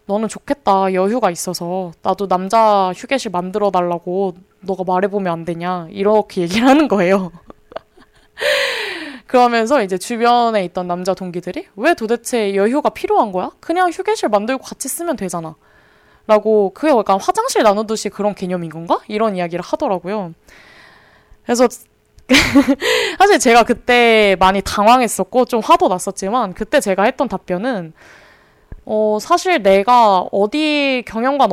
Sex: female